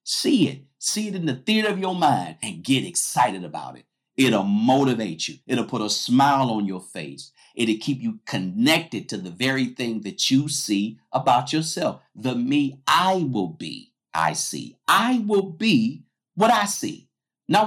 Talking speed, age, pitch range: 175 wpm, 50-69, 115-190 Hz